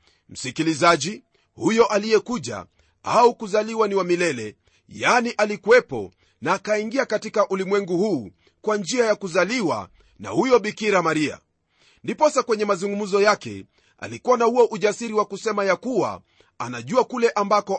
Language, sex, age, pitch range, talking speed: Swahili, male, 40-59, 180-215 Hz, 130 wpm